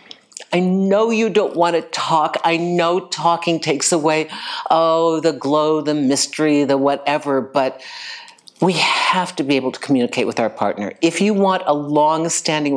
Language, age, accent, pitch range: English, 60-79, American, 140-200 Hz